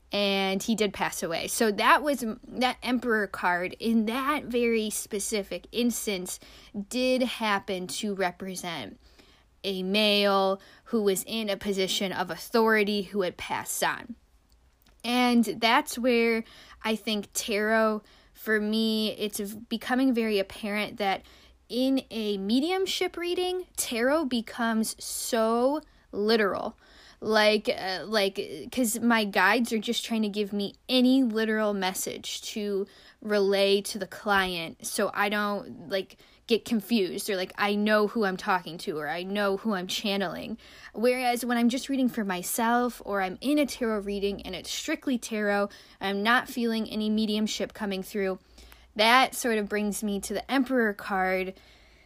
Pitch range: 200-235 Hz